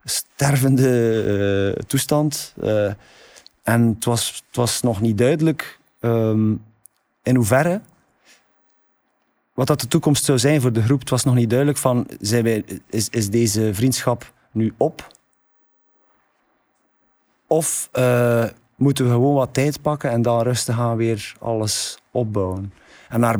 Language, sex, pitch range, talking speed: Dutch, male, 110-130 Hz, 140 wpm